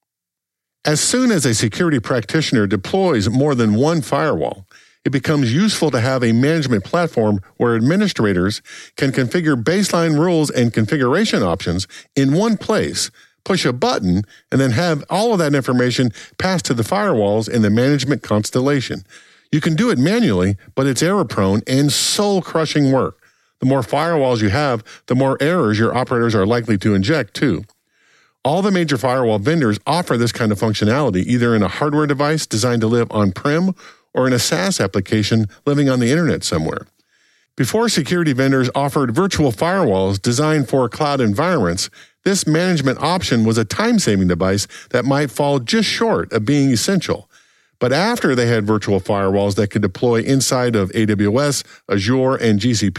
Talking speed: 165 wpm